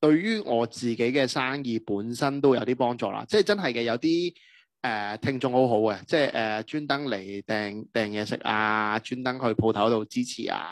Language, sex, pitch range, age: Chinese, male, 115-160 Hz, 30-49